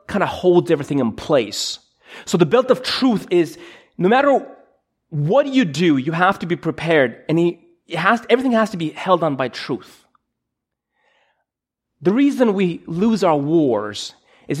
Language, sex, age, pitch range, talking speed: English, male, 30-49, 145-210 Hz, 175 wpm